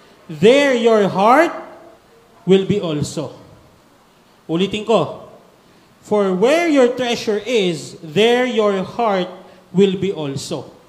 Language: Filipino